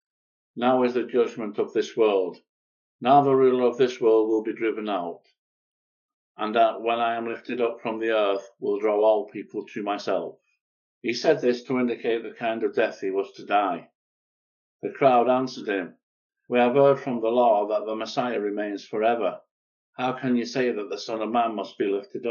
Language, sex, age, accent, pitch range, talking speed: English, male, 50-69, British, 110-135 Hz, 195 wpm